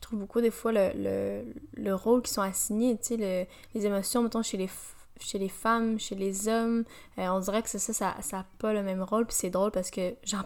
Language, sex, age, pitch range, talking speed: French, female, 10-29, 180-215 Hz, 265 wpm